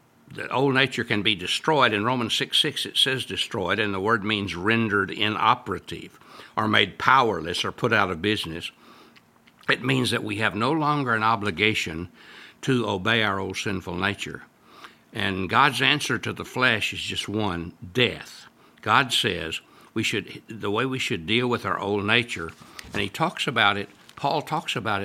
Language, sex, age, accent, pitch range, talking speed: English, male, 60-79, American, 95-120 Hz, 175 wpm